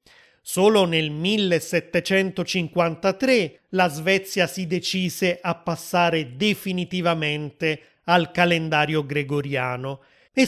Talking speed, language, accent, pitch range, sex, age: 80 wpm, Italian, native, 155-195 Hz, male, 30-49